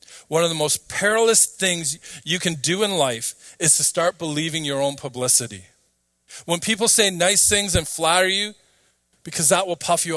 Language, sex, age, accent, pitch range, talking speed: English, male, 40-59, American, 130-180 Hz, 185 wpm